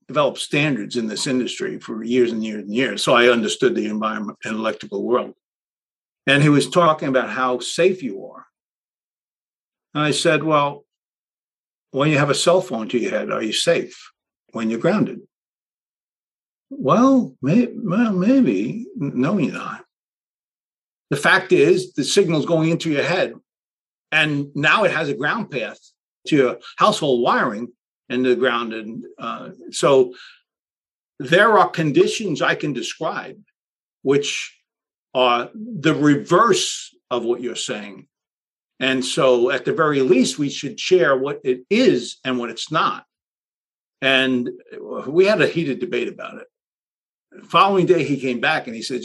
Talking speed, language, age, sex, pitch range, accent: 155 wpm, English, 50-69, male, 130-190 Hz, American